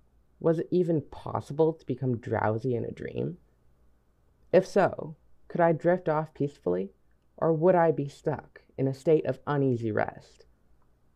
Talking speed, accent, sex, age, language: 150 wpm, American, female, 30-49, English